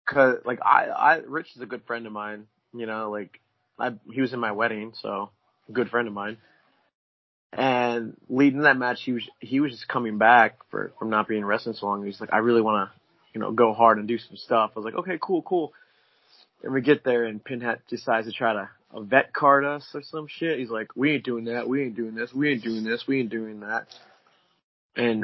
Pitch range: 110-130 Hz